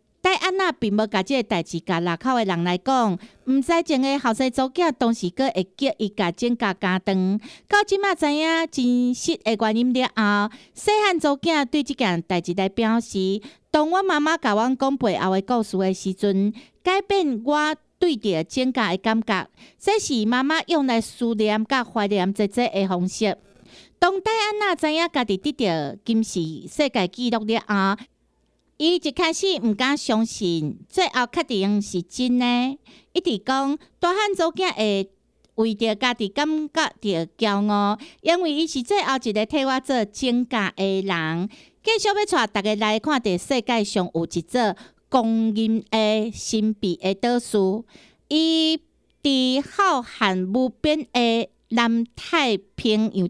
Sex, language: female, Chinese